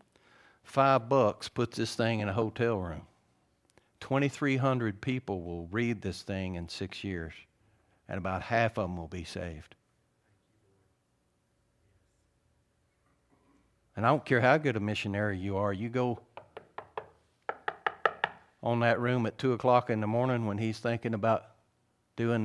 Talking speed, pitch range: 140 wpm, 100-125 Hz